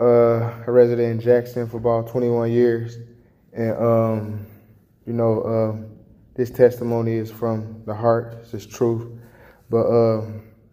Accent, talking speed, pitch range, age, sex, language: American, 150 wpm, 110-120 Hz, 10-29, male, English